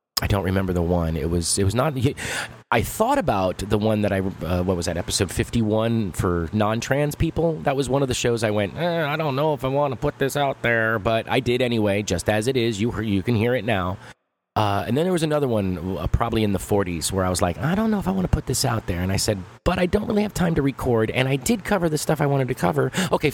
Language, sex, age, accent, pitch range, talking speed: English, male, 30-49, American, 100-135 Hz, 280 wpm